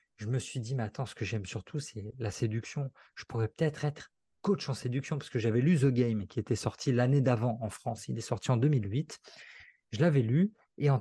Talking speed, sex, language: 235 wpm, male, French